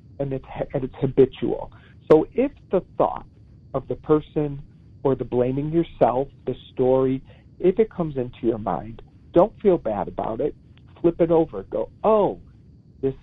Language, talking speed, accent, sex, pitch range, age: English, 155 wpm, American, male, 120-155 Hz, 50-69